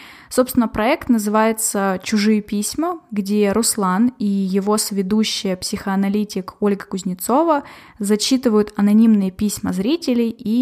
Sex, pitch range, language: female, 200-240 Hz, Russian